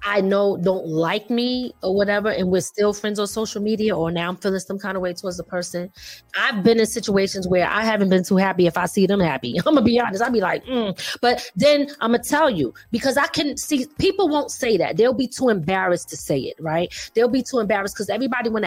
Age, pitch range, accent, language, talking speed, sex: 20-39, 190-260 Hz, American, English, 250 wpm, female